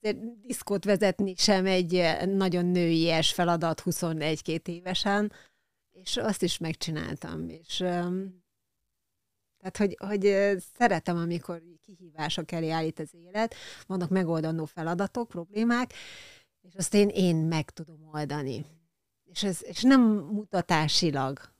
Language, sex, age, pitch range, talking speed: Hungarian, female, 30-49, 160-200 Hz, 110 wpm